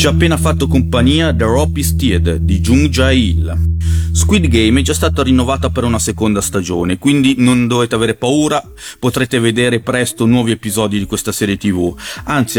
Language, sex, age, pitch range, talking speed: Italian, male, 40-59, 95-125 Hz, 170 wpm